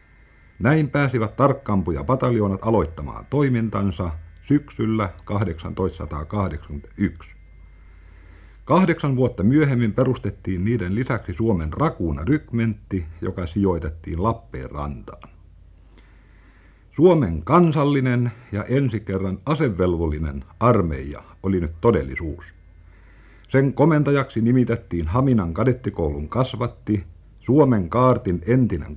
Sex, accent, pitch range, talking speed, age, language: male, native, 85-125 Hz, 80 wpm, 60-79, Finnish